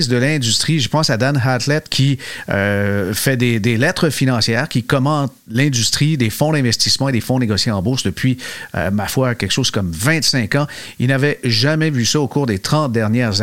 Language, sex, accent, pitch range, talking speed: French, male, Canadian, 115-145 Hz, 200 wpm